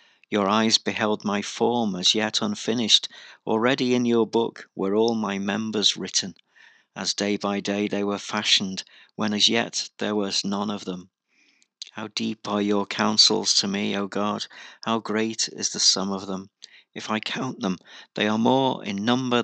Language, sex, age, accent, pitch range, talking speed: English, male, 50-69, British, 100-120 Hz, 175 wpm